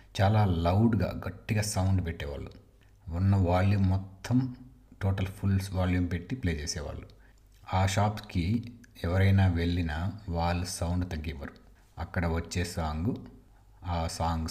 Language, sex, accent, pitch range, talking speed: Telugu, male, native, 85-100 Hz, 110 wpm